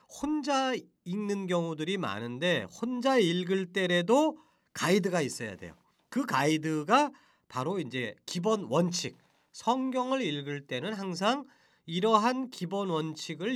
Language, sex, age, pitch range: Korean, male, 40-59, 145-230 Hz